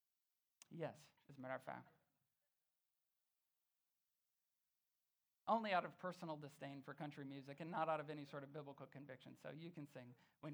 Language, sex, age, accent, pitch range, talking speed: English, male, 40-59, American, 145-200 Hz, 160 wpm